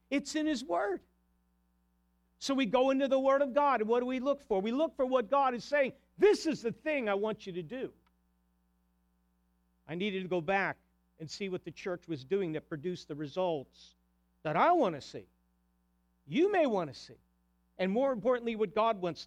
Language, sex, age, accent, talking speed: English, male, 50-69, American, 205 wpm